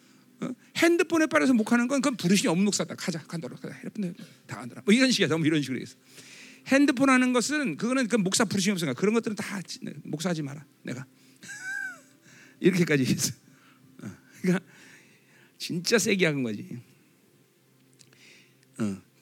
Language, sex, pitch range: Korean, male, 160-245 Hz